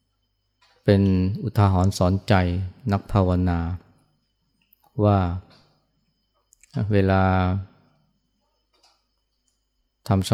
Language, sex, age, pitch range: Thai, male, 20-39, 95-105 Hz